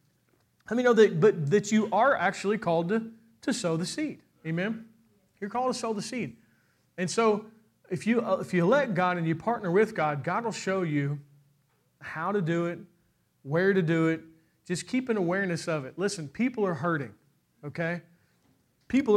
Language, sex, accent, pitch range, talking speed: English, male, American, 155-200 Hz, 185 wpm